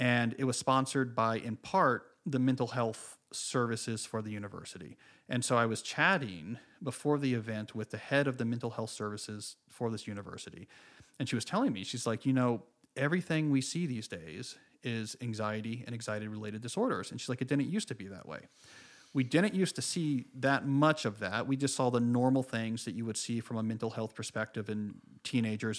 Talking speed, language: 205 wpm, English